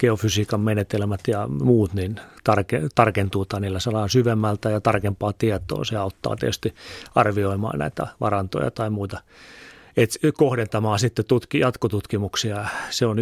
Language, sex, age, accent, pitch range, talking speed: Finnish, male, 30-49, native, 100-115 Hz, 120 wpm